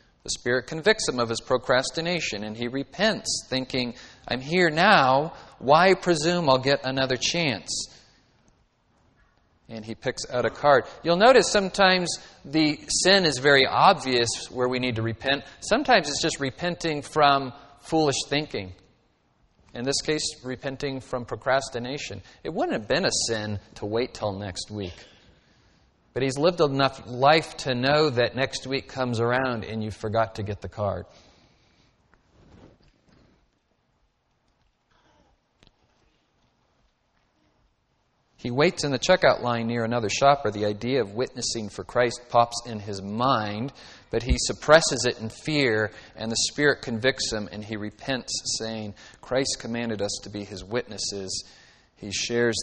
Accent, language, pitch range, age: American, English, 105-140 Hz, 40-59